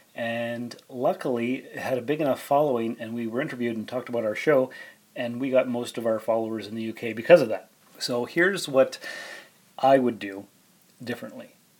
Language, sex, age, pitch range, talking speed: English, male, 30-49, 115-135 Hz, 190 wpm